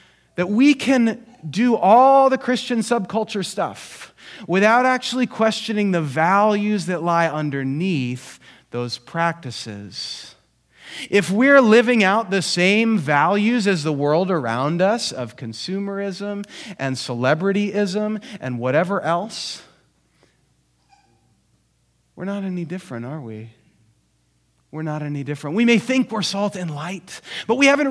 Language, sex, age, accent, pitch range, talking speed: English, male, 30-49, American, 140-220 Hz, 125 wpm